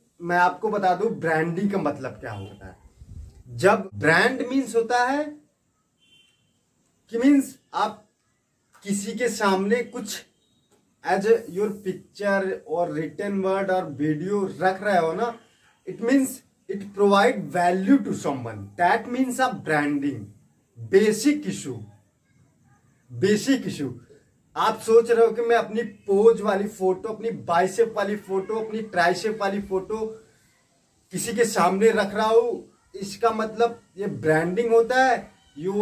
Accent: native